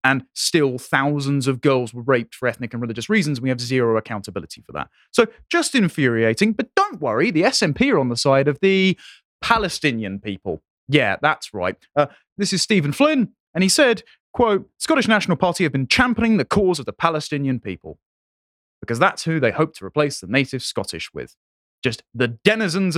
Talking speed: 190 wpm